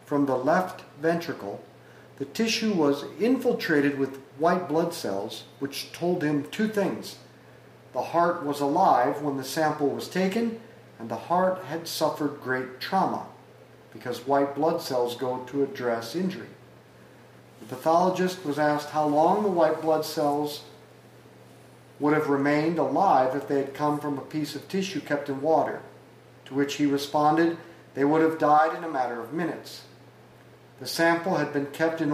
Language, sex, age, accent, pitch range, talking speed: English, male, 40-59, American, 135-165 Hz, 160 wpm